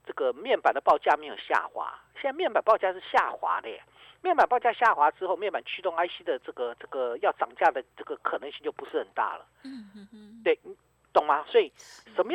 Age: 50-69